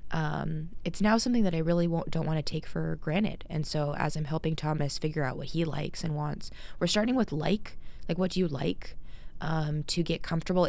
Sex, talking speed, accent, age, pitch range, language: female, 225 wpm, American, 20-39, 150-180 Hz, English